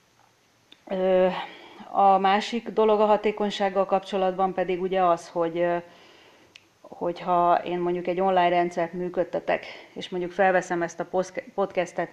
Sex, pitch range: female, 175-190 Hz